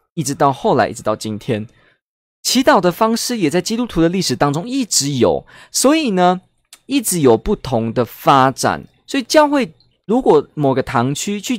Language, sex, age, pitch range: Chinese, male, 20-39, 120-195 Hz